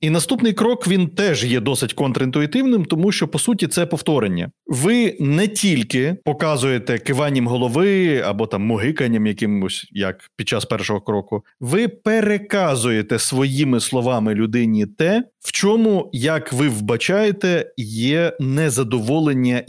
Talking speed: 130 wpm